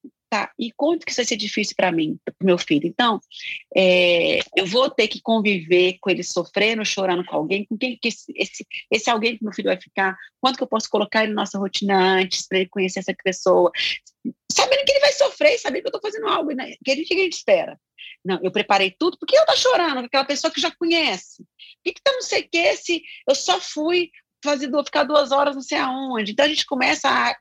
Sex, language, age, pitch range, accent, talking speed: female, Portuguese, 40-59, 190-295 Hz, Brazilian, 240 wpm